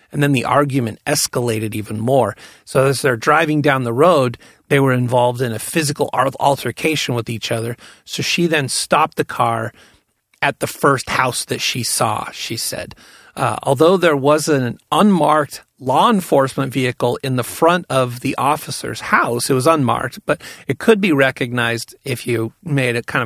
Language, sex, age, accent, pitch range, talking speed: English, male, 40-59, American, 120-155 Hz, 175 wpm